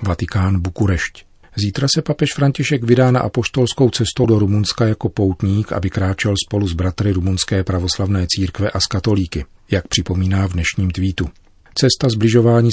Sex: male